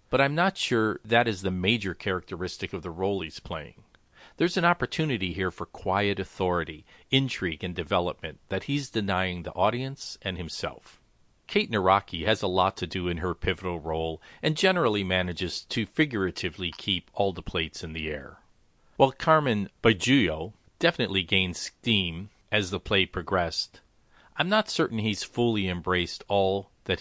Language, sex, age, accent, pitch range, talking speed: English, male, 40-59, American, 90-115 Hz, 160 wpm